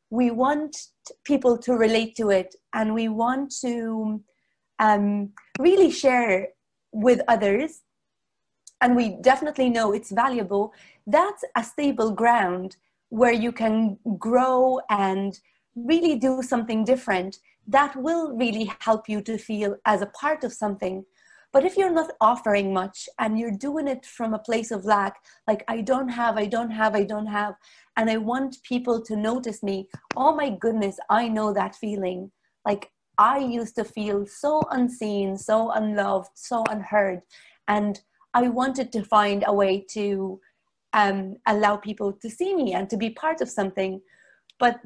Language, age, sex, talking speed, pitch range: English, 30-49, female, 160 wpm, 205-250 Hz